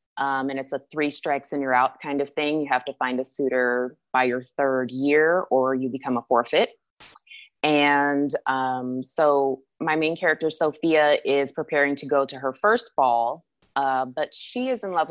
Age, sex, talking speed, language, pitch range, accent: 20-39, female, 190 wpm, English, 130-160 Hz, American